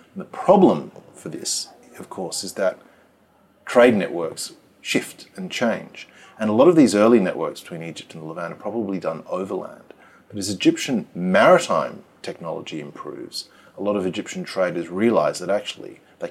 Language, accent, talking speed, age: English, Australian, 160 wpm, 30-49